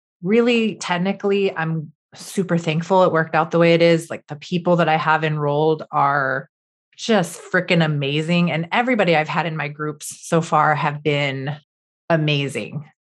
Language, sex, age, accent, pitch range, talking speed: English, female, 30-49, American, 155-185 Hz, 160 wpm